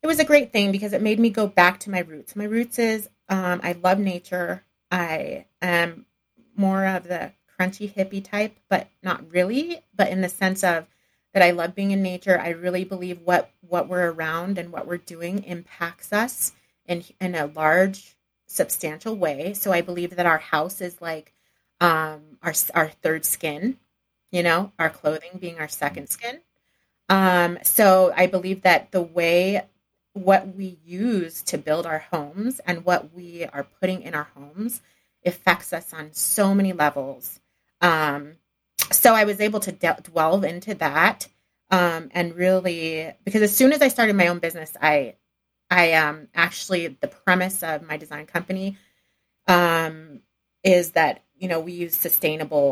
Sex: female